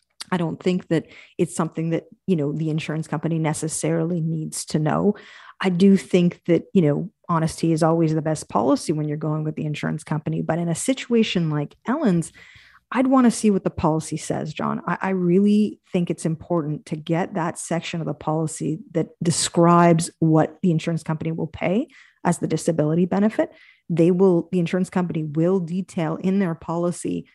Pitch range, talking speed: 160-195 Hz, 185 wpm